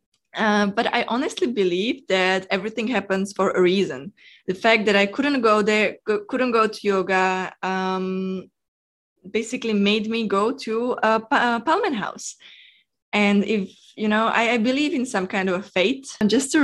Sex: female